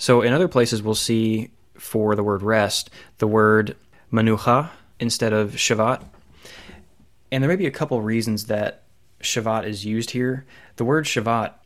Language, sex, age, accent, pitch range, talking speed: English, male, 20-39, American, 105-120 Hz, 160 wpm